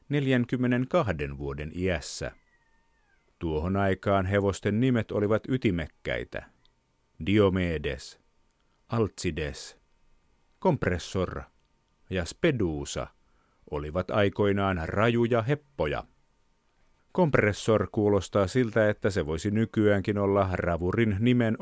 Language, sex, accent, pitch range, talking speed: Finnish, male, native, 90-110 Hz, 80 wpm